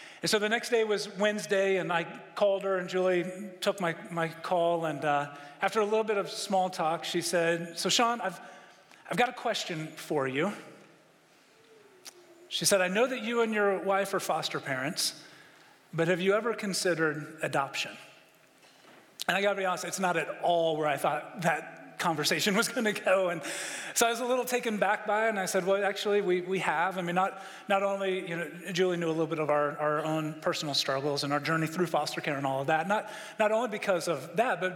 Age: 40-59